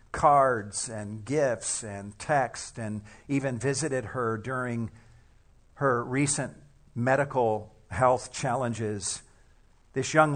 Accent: American